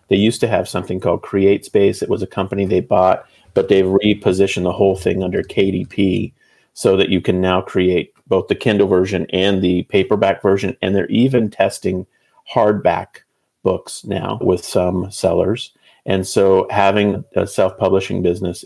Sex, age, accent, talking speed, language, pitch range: male, 30-49, American, 165 wpm, English, 95-105 Hz